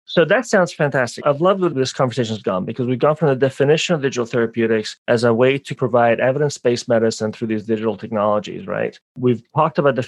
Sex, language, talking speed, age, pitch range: male, English, 215 wpm, 30-49, 115-150 Hz